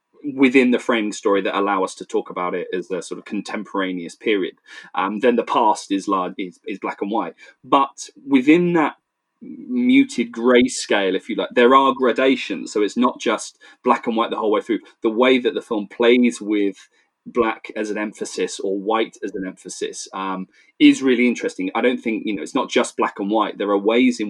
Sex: male